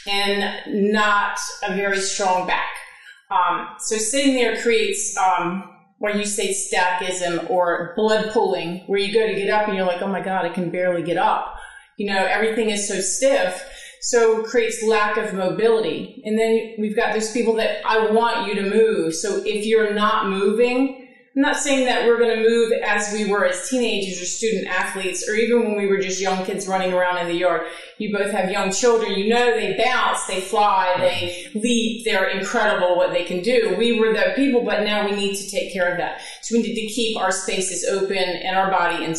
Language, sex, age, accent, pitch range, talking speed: English, female, 30-49, American, 190-230 Hz, 210 wpm